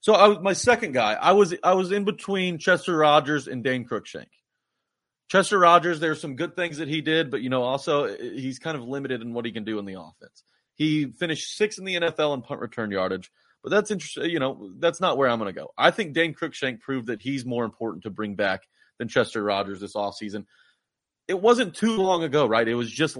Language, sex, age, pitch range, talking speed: English, male, 30-49, 120-170 Hz, 235 wpm